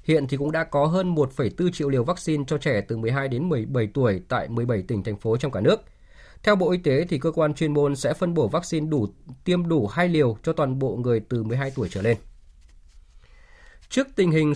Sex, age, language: male, 20-39, Vietnamese